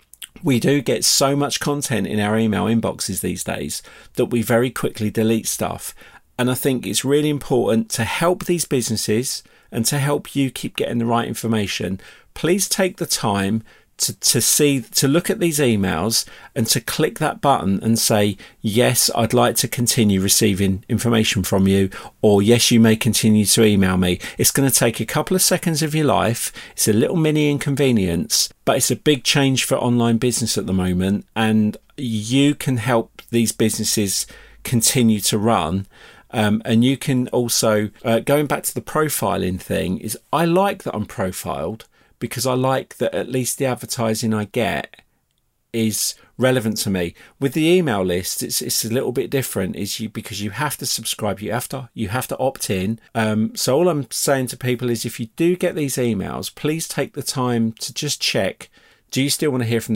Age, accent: 40-59, British